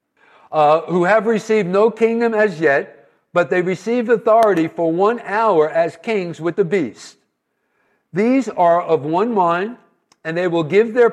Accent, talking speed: American, 160 wpm